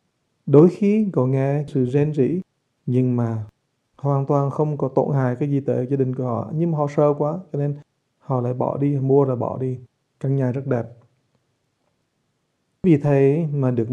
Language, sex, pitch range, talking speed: English, male, 125-145 Hz, 195 wpm